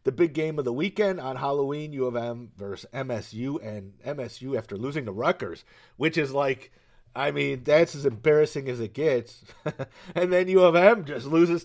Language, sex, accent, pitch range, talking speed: English, male, American, 120-160 Hz, 190 wpm